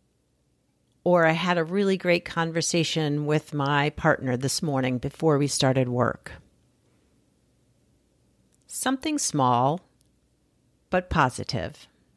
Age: 50-69